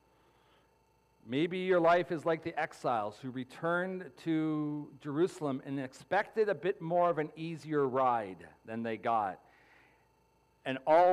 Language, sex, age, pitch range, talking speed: English, male, 40-59, 110-150 Hz, 135 wpm